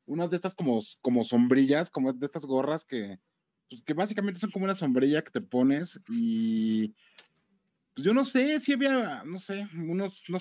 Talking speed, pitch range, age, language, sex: 175 wpm, 130-195 Hz, 20-39, Spanish, male